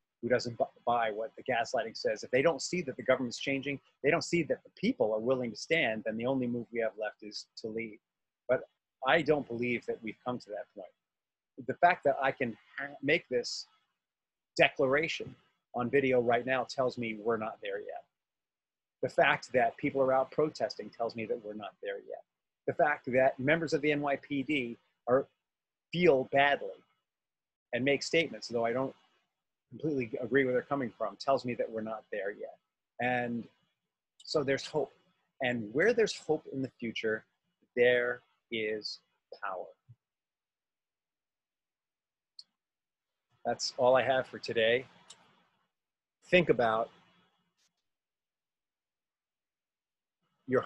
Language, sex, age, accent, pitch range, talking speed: English, male, 30-49, American, 120-150 Hz, 150 wpm